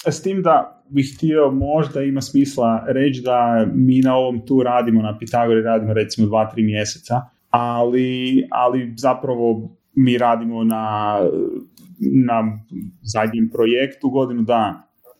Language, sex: Croatian, male